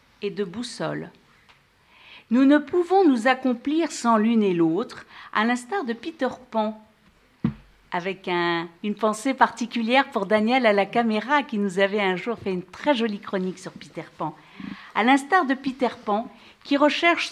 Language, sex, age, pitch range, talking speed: French, female, 50-69, 205-270 Hz, 165 wpm